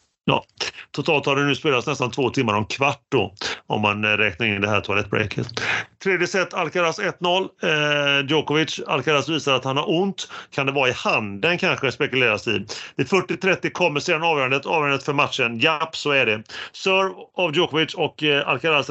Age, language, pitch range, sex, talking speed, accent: 30-49, Swedish, 135-170 Hz, male, 180 wpm, native